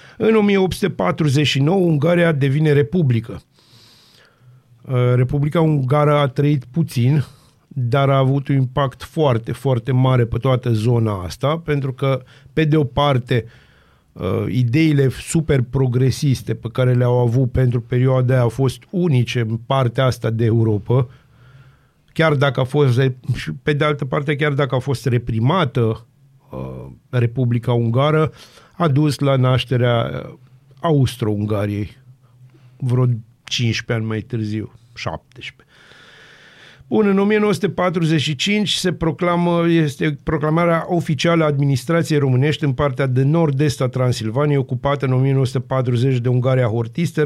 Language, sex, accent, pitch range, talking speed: Romanian, male, native, 125-150 Hz, 120 wpm